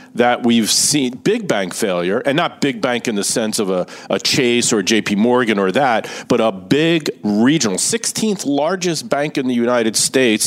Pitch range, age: 120-190 Hz, 40-59